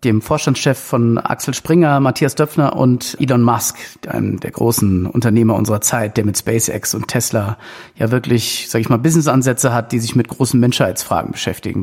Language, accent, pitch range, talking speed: German, German, 120-145 Hz, 170 wpm